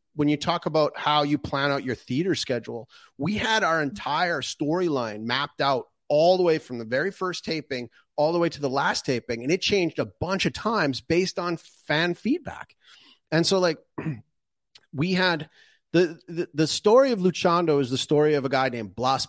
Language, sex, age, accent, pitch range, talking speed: English, male, 30-49, American, 130-170 Hz, 195 wpm